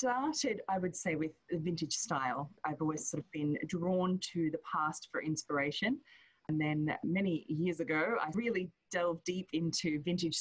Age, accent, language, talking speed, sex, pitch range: 20-39, Australian, English, 165 wpm, female, 150-180 Hz